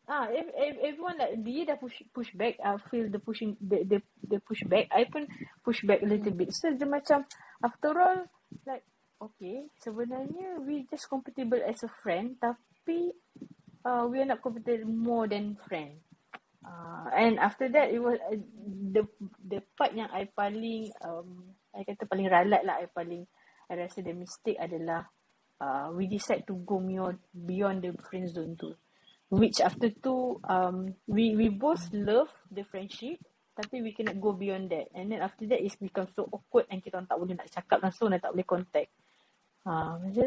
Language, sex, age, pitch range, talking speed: Malay, female, 30-49, 185-230 Hz, 180 wpm